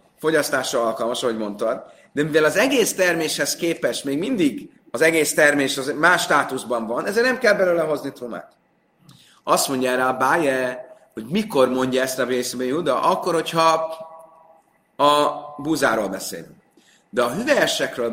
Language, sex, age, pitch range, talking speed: Hungarian, male, 30-49, 115-160 Hz, 140 wpm